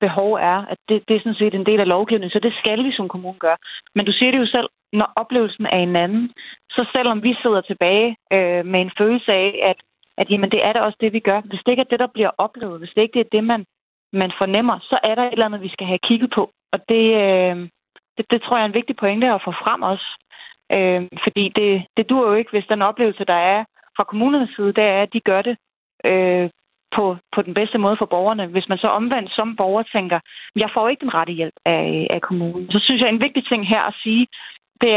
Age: 30-49